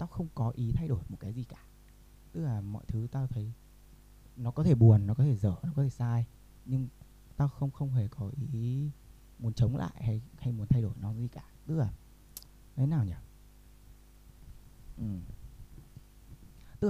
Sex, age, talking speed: male, 20-39, 190 wpm